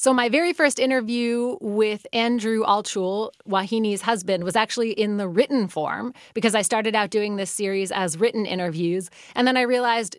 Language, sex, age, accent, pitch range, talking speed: English, female, 30-49, American, 185-235 Hz, 175 wpm